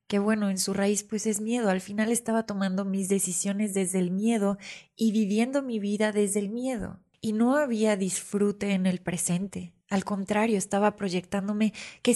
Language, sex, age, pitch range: Spanish, female, 20-39, 200-235 Hz